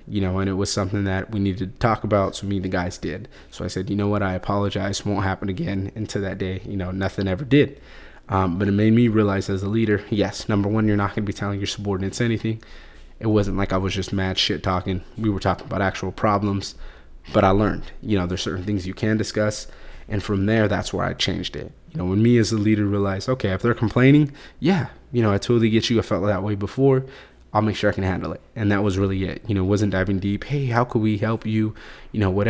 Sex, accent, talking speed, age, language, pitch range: male, American, 265 wpm, 20-39, English, 95-110 Hz